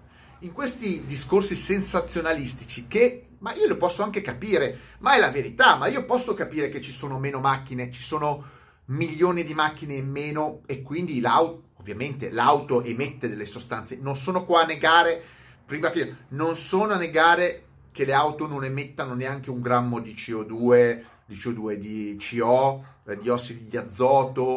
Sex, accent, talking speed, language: male, native, 165 wpm, Italian